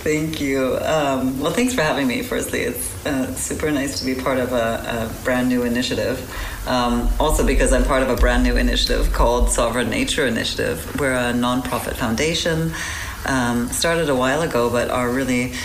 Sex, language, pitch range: female, English, 110-130 Hz